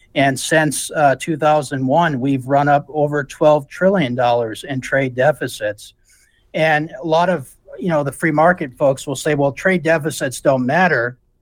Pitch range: 130-160 Hz